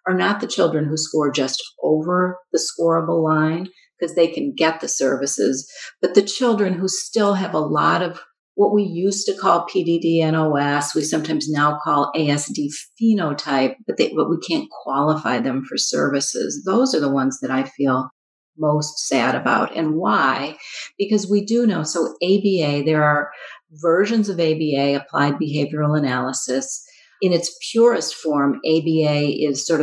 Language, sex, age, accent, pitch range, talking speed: English, female, 50-69, American, 145-185 Hz, 160 wpm